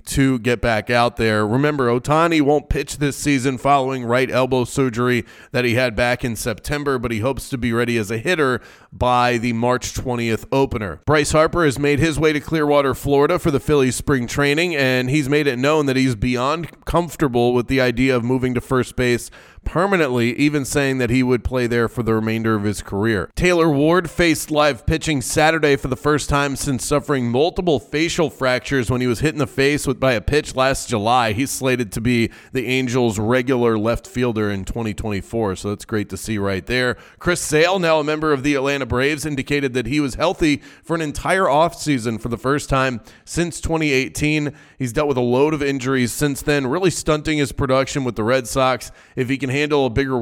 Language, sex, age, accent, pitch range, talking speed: English, male, 30-49, American, 120-150 Hz, 205 wpm